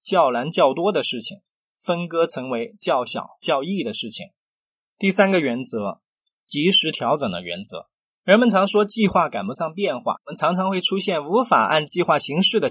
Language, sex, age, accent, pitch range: Chinese, male, 20-39, native, 165-220 Hz